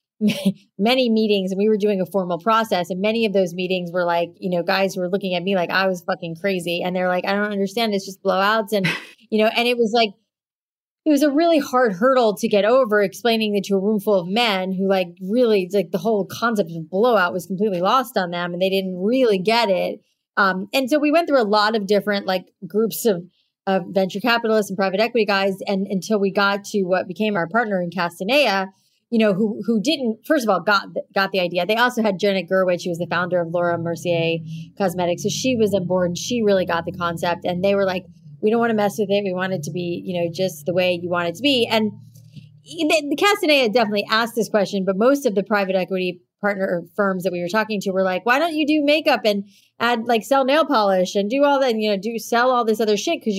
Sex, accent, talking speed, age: female, American, 255 wpm, 30-49